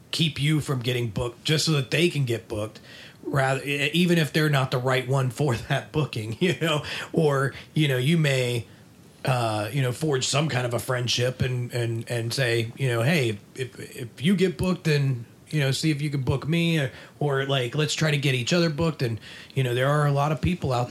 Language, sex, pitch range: English, male, 120-145 Hz